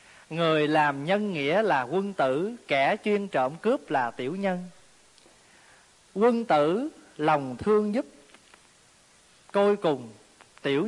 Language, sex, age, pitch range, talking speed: Vietnamese, male, 20-39, 140-195 Hz, 120 wpm